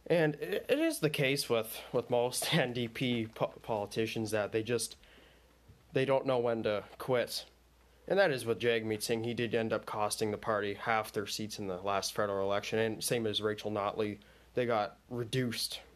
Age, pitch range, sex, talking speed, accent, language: 20-39, 110-130 Hz, male, 185 wpm, American, English